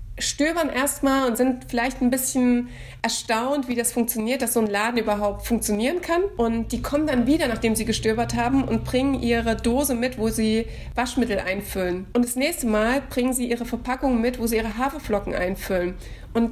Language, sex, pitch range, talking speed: German, female, 225-250 Hz, 185 wpm